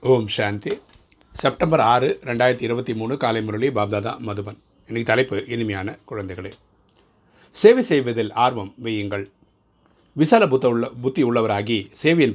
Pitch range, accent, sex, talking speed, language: 105-125 Hz, native, male, 115 wpm, Tamil